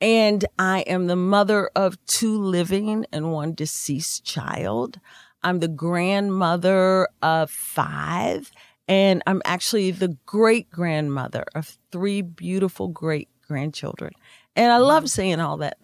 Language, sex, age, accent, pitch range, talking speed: English, female, 40-59, American, 160-195 Hz, 125 wpm